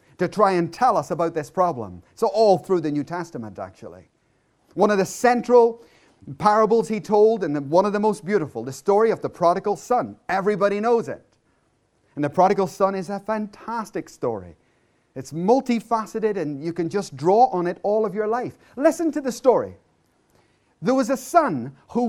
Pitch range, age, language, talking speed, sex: 170-255 Hz, 30-49, English, 180 wpm, male